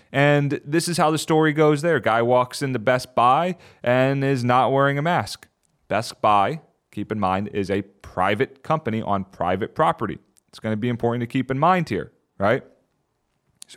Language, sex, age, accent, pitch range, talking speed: English, male, 30-49, American, 110-140 Hz, 185 wpm